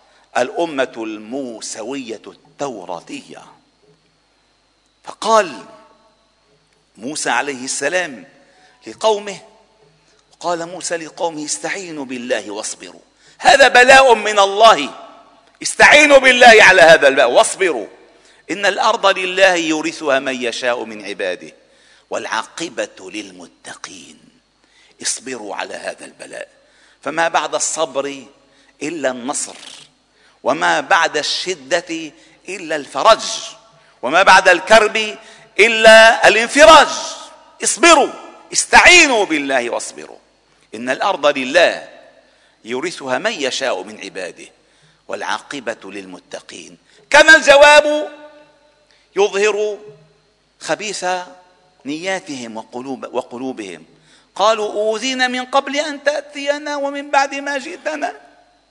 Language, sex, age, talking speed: Arabic, male, 50-69, 85 wpm